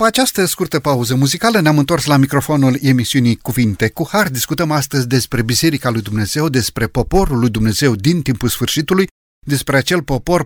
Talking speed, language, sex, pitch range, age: 160 wpm, Romanian, male, 125-180 Hz, 30-49